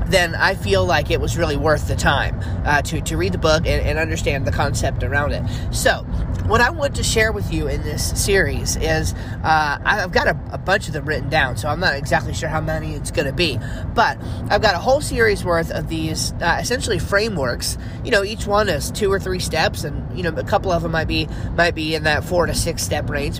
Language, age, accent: English, 30-49, American